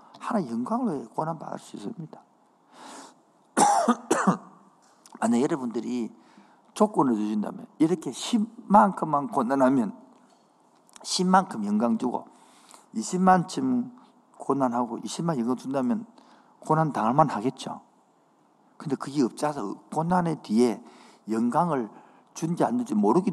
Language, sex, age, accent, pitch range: Korean, male, 50-69, native, 145-235 Hz